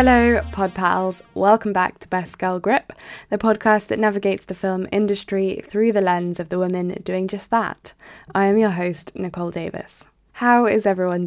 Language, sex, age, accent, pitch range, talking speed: English, female, 10-29, British, 180-215 Hz, 180 wpm